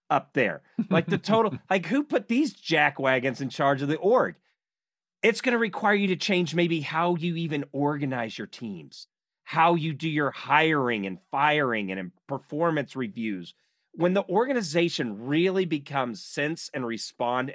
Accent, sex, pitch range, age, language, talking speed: American, male, 125-175 Hz, 40-59, English, 165 wpm